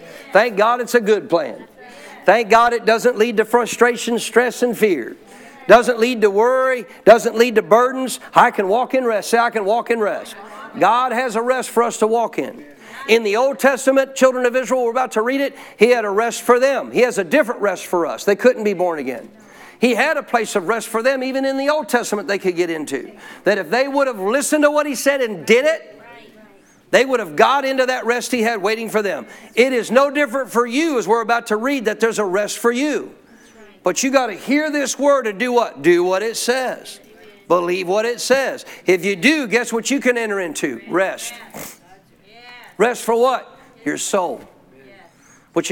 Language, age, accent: English, 50-69, American